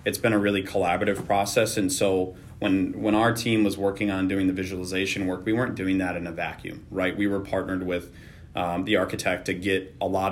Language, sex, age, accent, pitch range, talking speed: English, male, 30-49, American, 95-105 Hz, 220 wpm